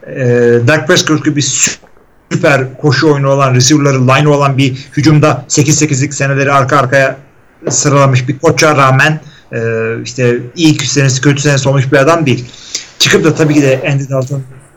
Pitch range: 130-160 Hz